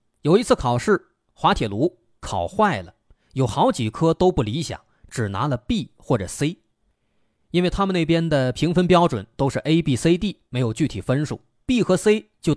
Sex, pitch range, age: male, 115-185 Hz, 30-49